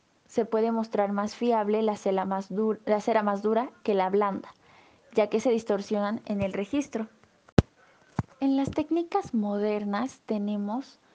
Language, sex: Spanish, female